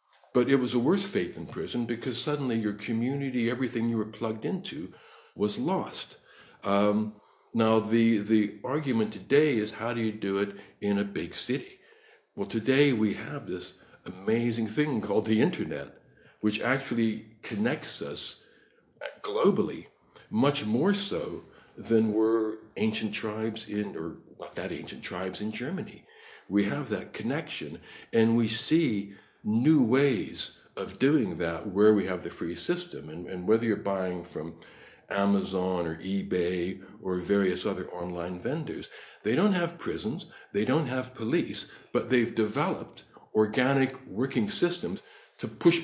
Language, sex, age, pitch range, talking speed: English, male, 60-79, 100-120 Hz, 145 wpm